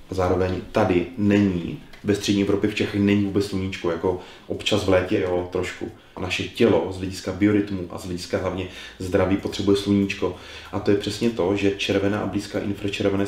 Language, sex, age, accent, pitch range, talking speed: Czech, male, 30-49, native, 95-105 Hz, 180 wpm